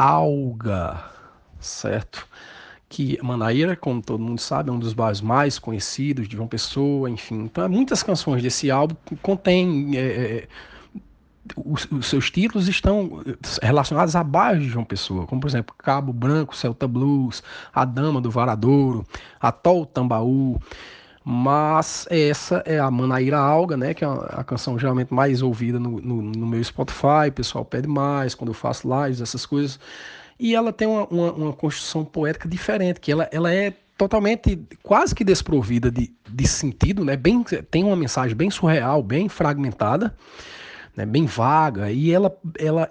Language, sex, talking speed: Portuguese, male, 150 wpm